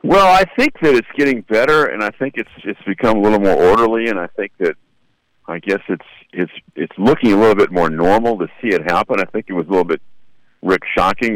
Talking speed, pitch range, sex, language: 230 wpm, 90-115 Hz, male, English